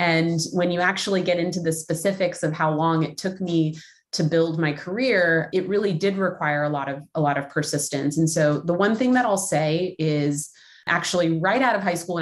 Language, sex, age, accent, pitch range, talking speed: English, female, 20-39, American, 155-200 Hz, 215 wpm